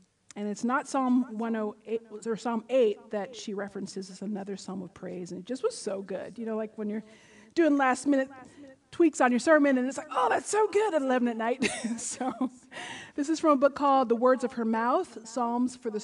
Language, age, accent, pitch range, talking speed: English, 40-59, American, 205-270 Hz, 220 wpm